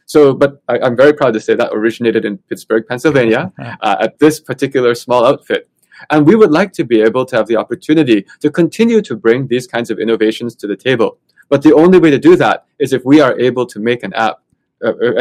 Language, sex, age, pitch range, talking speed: English, male, 20-39, 120-160 Hz, 225 wpm